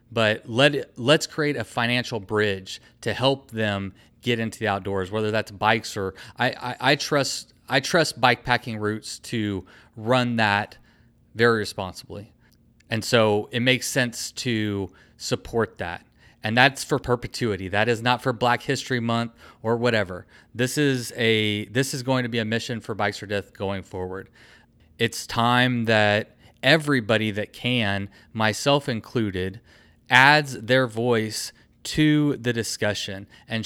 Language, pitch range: English, 105-125 Hz